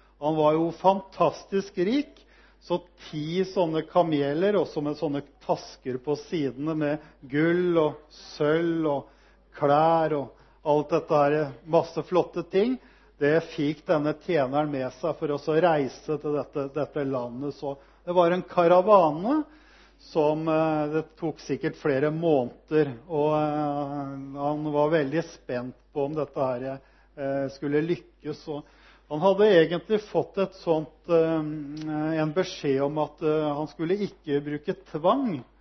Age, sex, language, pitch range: 50-69, male, Swedish, 145-170 Hz